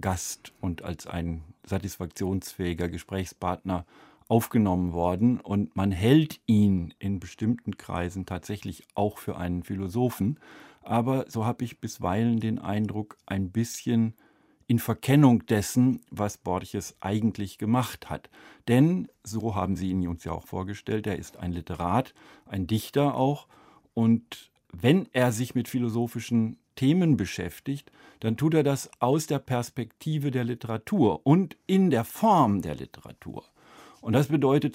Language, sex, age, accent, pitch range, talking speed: German, male, 50-69, German, 100-130 Hz, 135 wpm